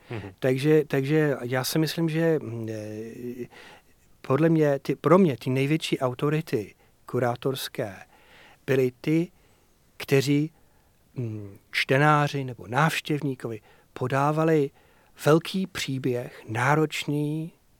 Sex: male